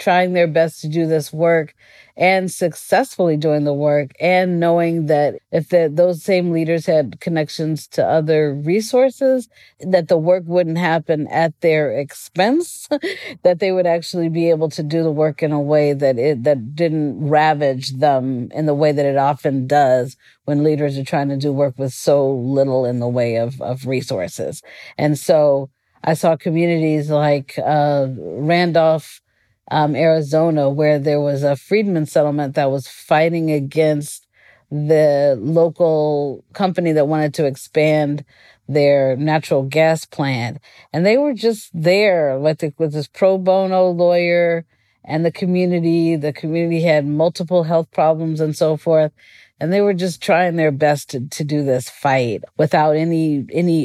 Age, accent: 40-59, American